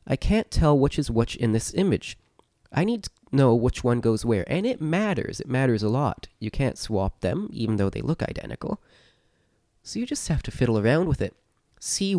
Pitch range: 105-145 Hz